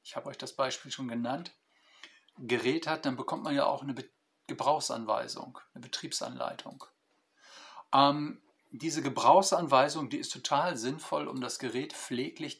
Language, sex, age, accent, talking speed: German, male, 50-69, German, 140 wpm